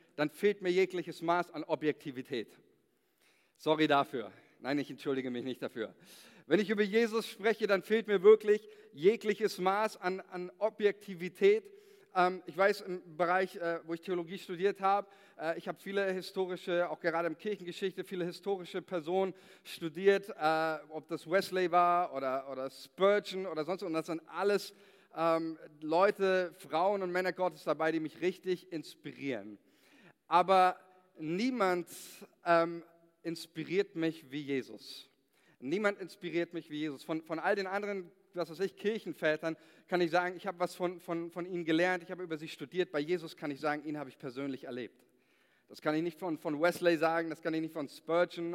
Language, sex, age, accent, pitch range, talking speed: German, male, 40-59, German, 160-190 Hz, 175 wpm